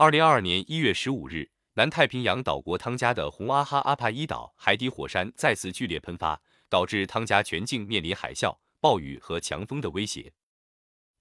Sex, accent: male, native